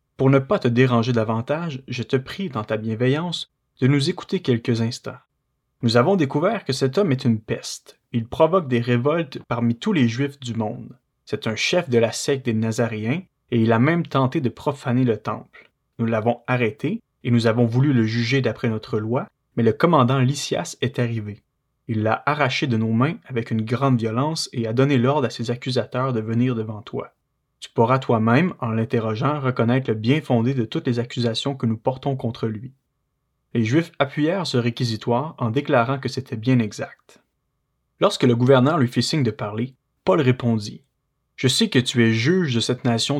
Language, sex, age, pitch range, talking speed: French, male, 30-49, 115-140 Hz, 195 wpm